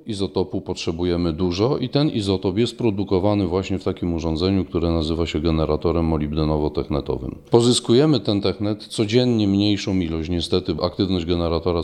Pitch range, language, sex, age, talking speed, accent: 85-105 Hz, Polish, male, 40-59, 130 wpm, native